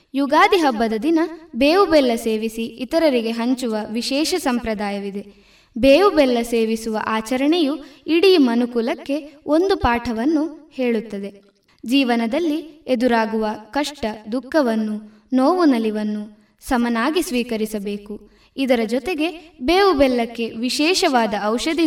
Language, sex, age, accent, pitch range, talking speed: Kannada, female, 20-39, native, 220-295 Hz, 90 wpm